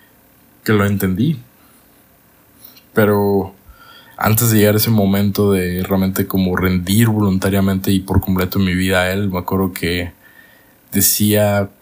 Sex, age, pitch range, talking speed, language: male, 20-39, 90-100 Hz, 130 wpm, Spanish